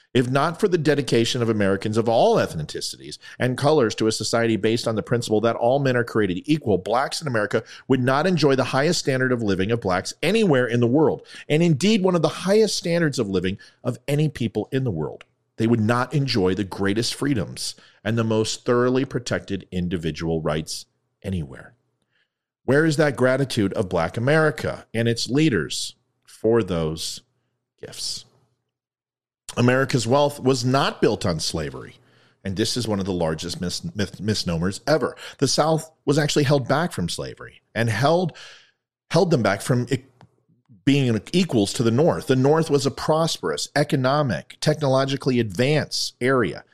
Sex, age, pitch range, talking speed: male, 40-59, 105-145 Hz, 170 wpm